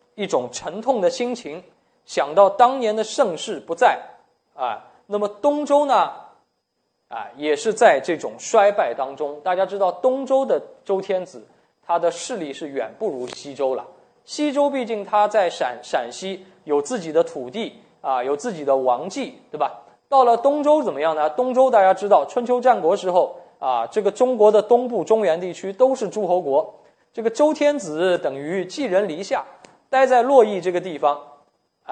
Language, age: Chinese, 20-39